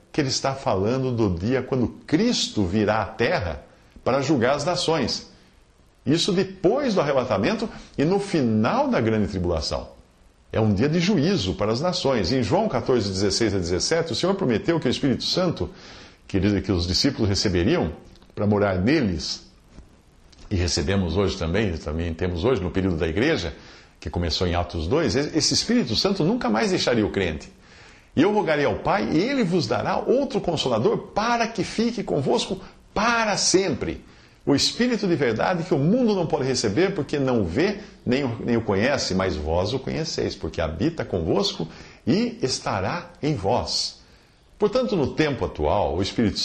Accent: Brazilian